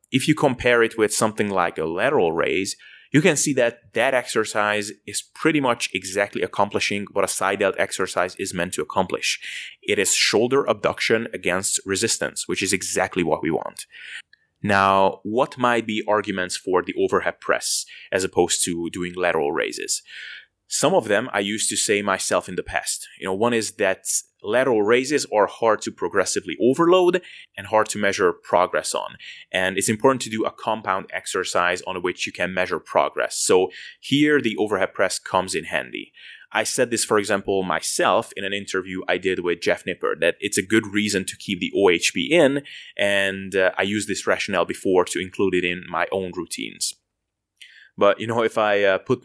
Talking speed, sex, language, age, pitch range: 185 wpm, male, English, 20-39, 95-145 Hz